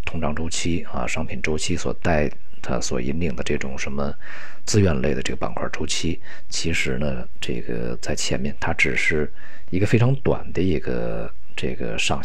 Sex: male